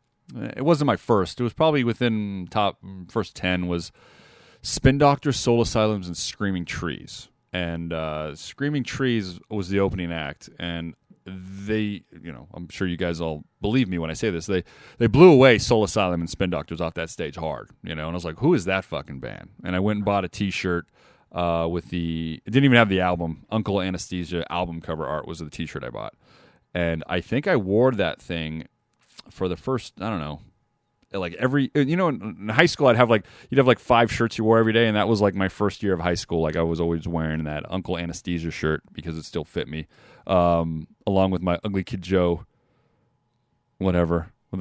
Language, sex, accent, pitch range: English, male, American, 85-115 Hz